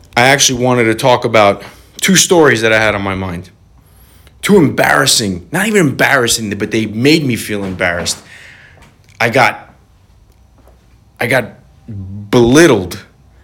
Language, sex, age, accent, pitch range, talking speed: English, male, 30-49, American, 90-120 Hz, 135 wpm